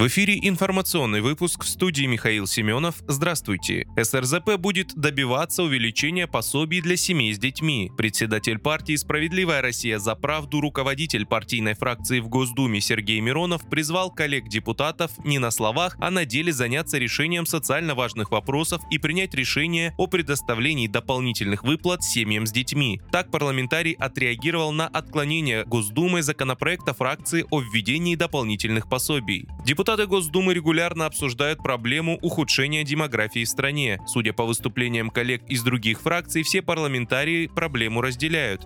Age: 20-39